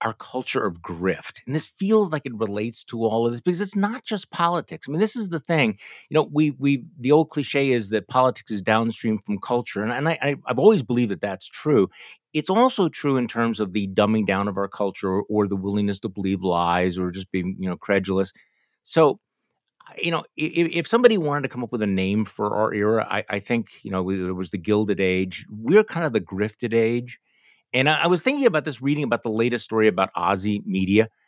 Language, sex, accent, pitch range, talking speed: English, male, American, 100-145 Hz, 230 wpm